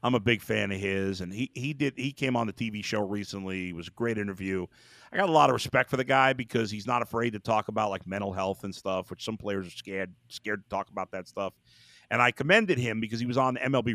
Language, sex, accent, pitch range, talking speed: English, male, American, 105-145 Hz, 270 wpm